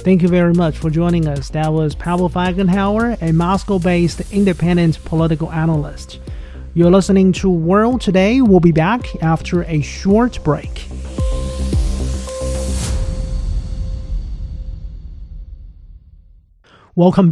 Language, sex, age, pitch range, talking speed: English, male, 30-49, 150-180 Hz, 100 wpm